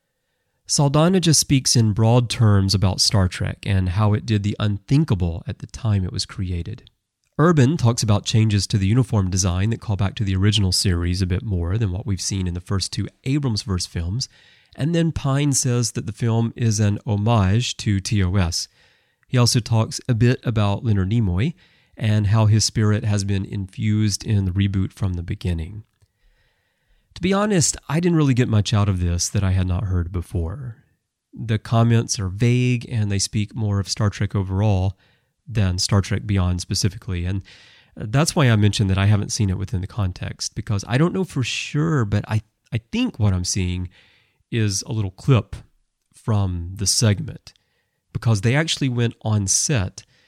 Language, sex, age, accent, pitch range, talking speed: English, male, 30-49, American, 95-120 Hz, 185 wpm